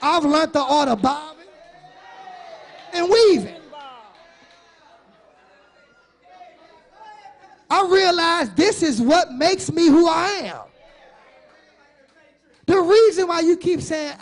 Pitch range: 235-335 Hz